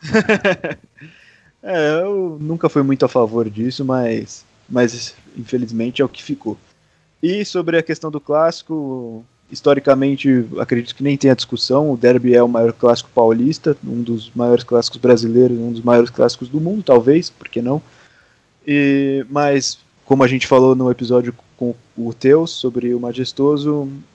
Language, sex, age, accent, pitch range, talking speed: Portuguese, male, 20-39, Brazilian, 120-145 Hz, 155 wpm